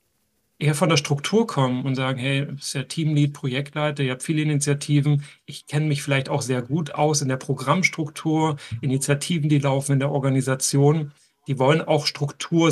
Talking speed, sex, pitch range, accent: 180 wpm, male, 135-155 Hz, German